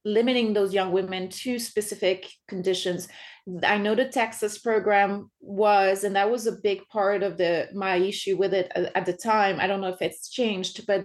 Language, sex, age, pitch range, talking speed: English, female, 30-49, 195-230 Hz, 190 wpm